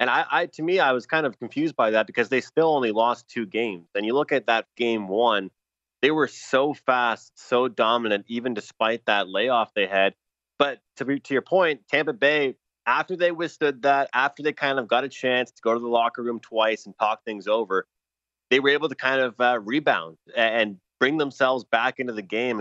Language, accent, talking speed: English, American, 220 wpm